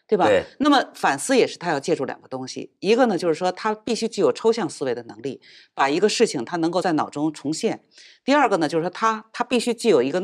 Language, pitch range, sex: Chinese, 180-270 Hz, female